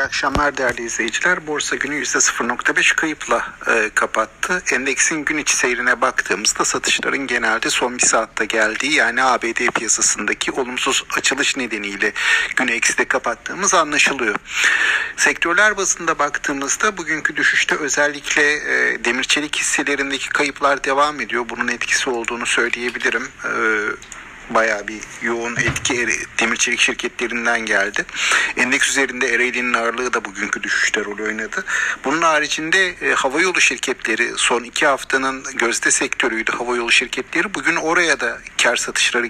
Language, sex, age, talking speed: Turkish, male, 50-69, 125 wpm